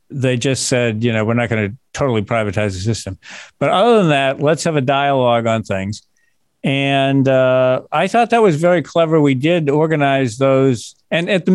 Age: 50-69